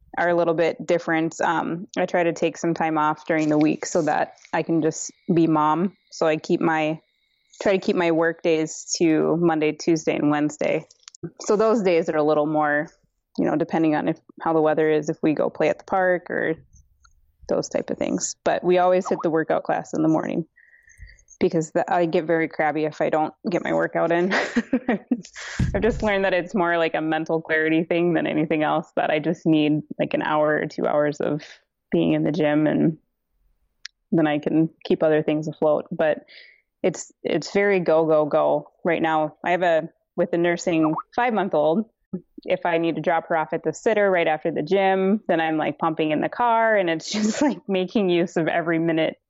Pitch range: 155-180 Hz